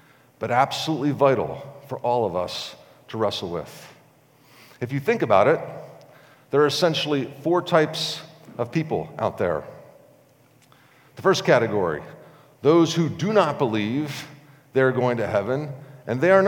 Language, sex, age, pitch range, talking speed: English, male, 50-69, 120-150 Hz, 140 wpm